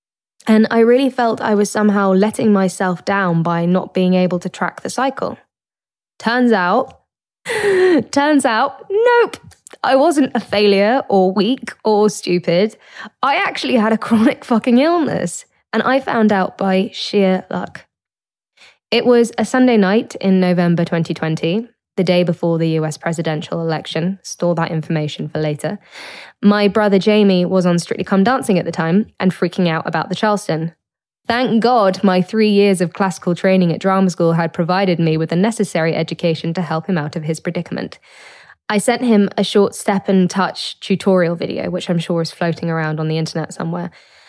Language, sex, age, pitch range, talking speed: English, female, 10-29, 175-225 Hz, 170 wpm